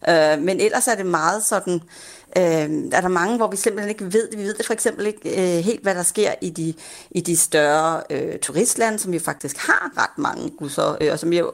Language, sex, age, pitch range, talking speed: Danish, female, 30-49, 160-230 Hz, 235 wpm